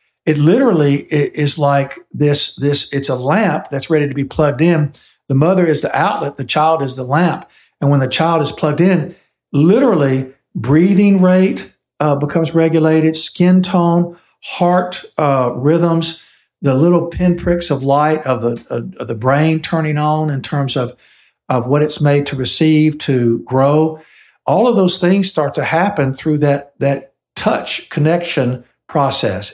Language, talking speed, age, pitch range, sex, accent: English, 160 wpm, 60-79, 130-160 Hz, male, American